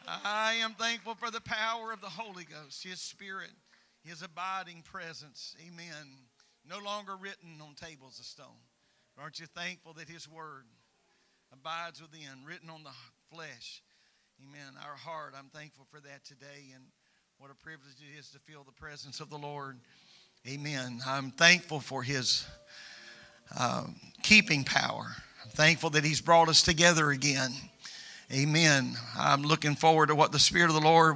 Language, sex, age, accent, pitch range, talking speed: English, male, 50-69, American, 140-175 Hz, 160 wpm